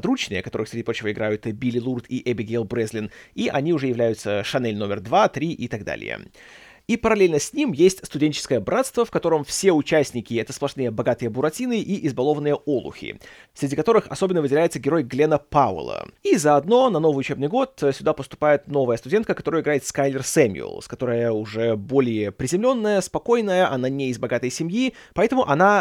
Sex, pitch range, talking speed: male, 130-195 Hz, 165 wpm